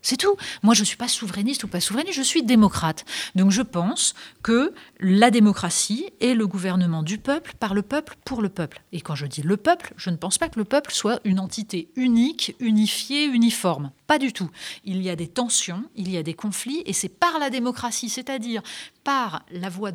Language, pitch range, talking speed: French, 180-240 Hz, 215 wpm